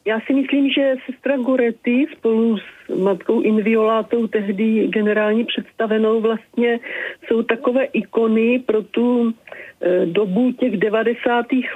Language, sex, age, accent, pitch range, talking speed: Czech, female, 40-59, native, 195-230 Hz, 110 wpm